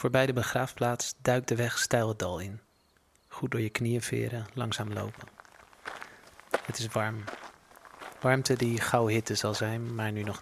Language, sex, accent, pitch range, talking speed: Dutch, male, Dutch, 110-120 Hz, 165 wpm